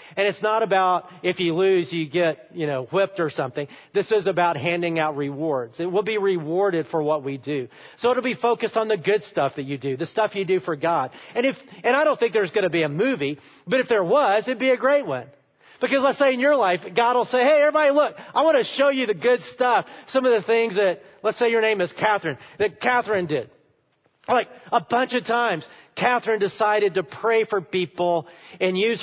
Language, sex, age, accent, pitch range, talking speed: English, male, 40-59, American, 175-235 Hz, 235 wpm